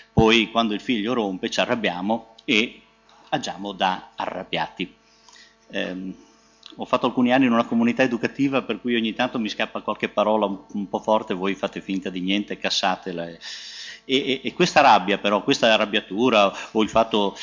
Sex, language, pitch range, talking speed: male, Italian, 100-125 Hz, 165 wpm